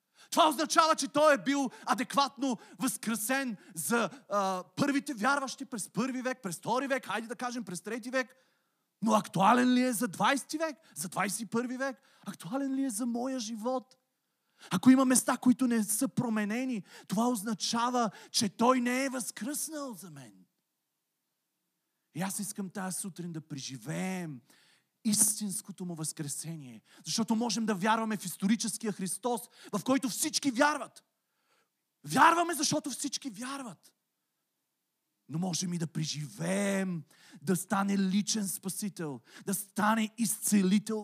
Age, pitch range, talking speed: 30-49, 190-255 Hz, 135 wpm